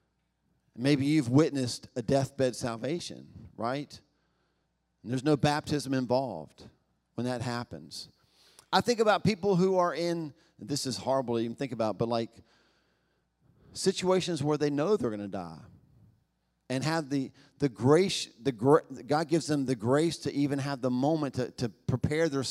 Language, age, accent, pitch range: English, 40-59, American, 115-150 Hz